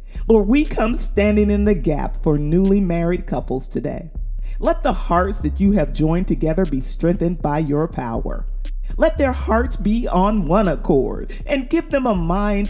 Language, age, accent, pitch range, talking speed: English, 40-59, American, 155-210 Hz, 175 wpm